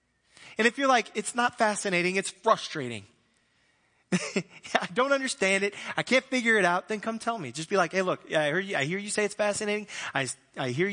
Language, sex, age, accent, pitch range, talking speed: English, male, 30-49, American, 140-205 Hz, 200 wpm